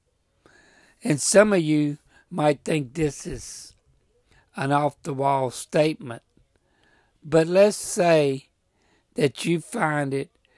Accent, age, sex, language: American, 60-79, male, English